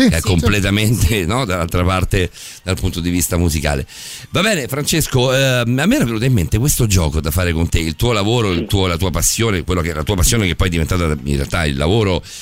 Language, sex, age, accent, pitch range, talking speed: Italian, male, 40-59, native, 90-115 Hz, 220 wpm